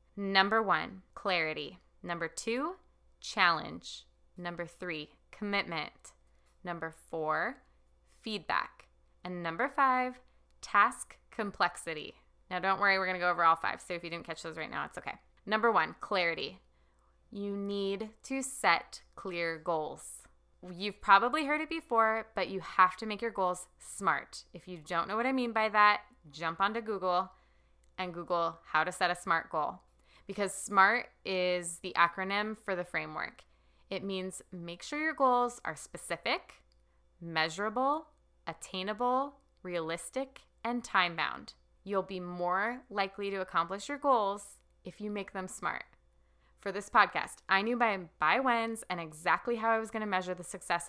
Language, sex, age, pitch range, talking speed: English, female, 20-39, 170-215 Hz, 155 wpm